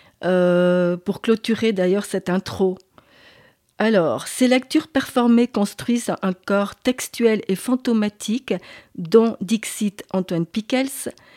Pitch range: 190-240 Hz